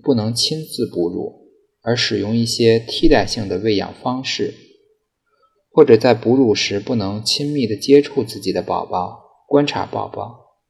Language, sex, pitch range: Chinese, male, 110-140 Hz